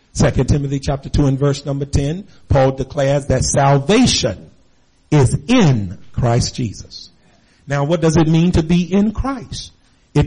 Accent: American